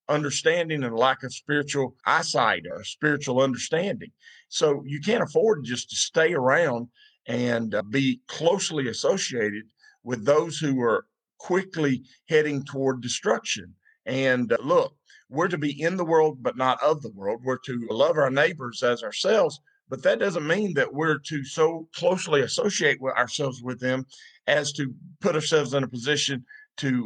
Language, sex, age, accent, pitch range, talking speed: English, male, 50-69, American, 130-160 Hz, 155 wpm